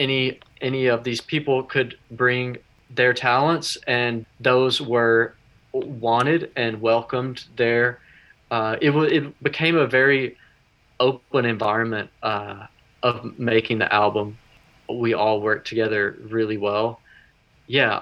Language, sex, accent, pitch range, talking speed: English, male, American, 110-130 Hz, 125 wpm